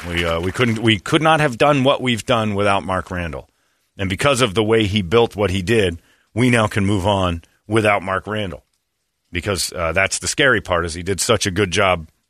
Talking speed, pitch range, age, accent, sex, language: 225 wpm, 85-110 Hz, 40-59, American, male, English